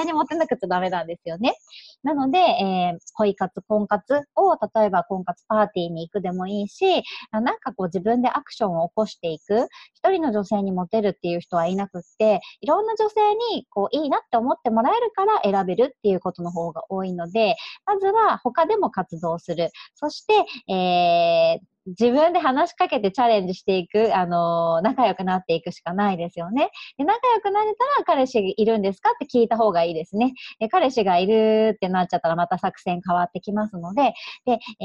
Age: 40-59